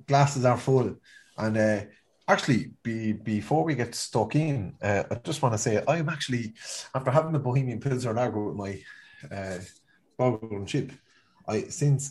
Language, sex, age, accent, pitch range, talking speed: English, male, 30-49, Irish, 100-120 Hz, 170 wpm